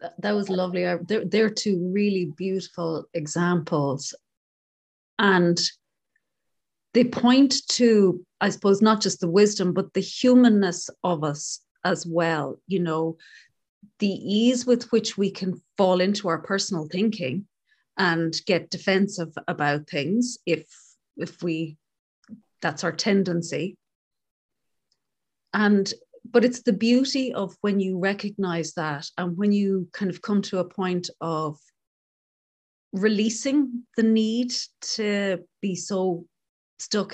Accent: Irish